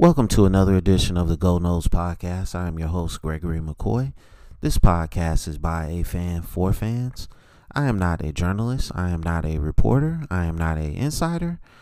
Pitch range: 80-105 Hz